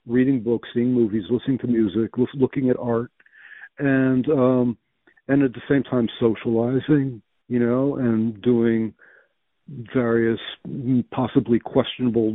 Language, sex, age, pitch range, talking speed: English, male, 60-79, 115-140 Hz, 120 wpm